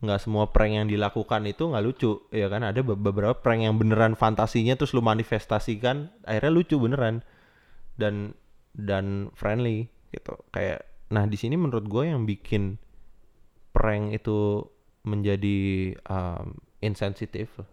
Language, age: Indonesian, 20-39